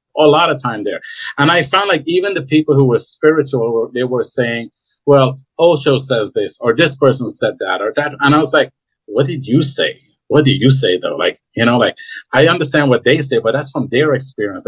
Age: 50-69